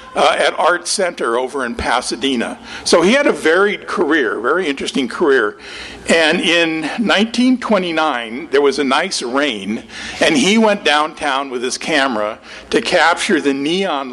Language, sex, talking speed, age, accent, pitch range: English, male, 150 wpm, 50-69, American, 150-225 Hz